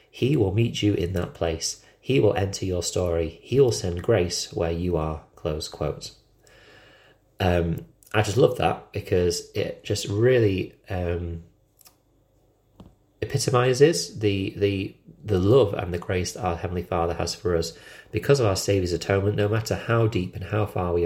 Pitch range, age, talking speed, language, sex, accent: 90-105 Hz, 30-49, 170 wpm, English, male, British